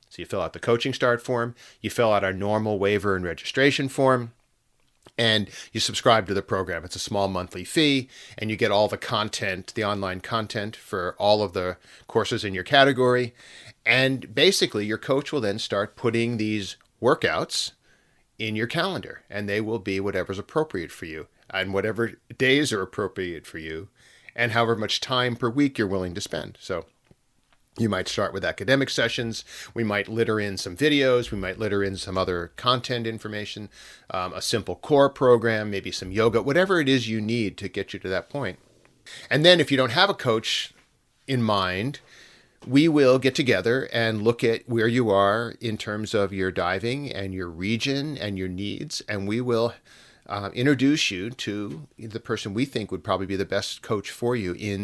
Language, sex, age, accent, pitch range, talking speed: English, male, 40-59, American, 100-125 Hz, 190 wpm